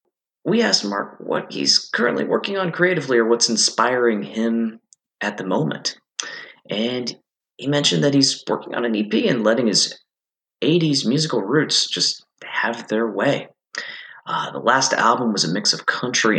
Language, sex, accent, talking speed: English, male, American, 160 wpm